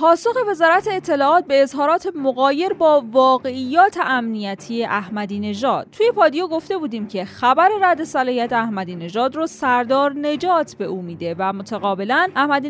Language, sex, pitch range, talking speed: Persian, female, 220-315 Hz, 135 wpm